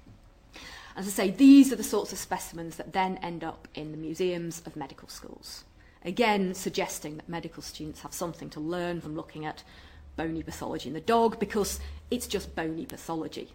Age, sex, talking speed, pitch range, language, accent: 40-59, female, 180 wpm, 155-220 Hz, English, British